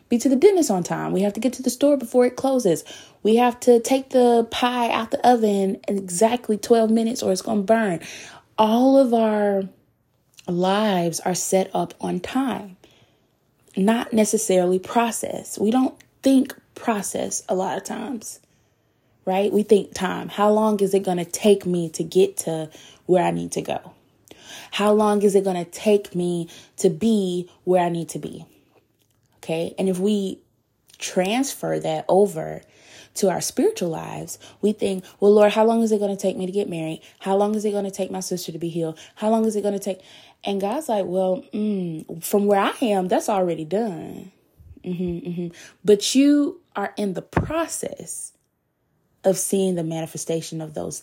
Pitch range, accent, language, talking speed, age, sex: 180-225 Hz, American, English, 190 wpm, 20-39, female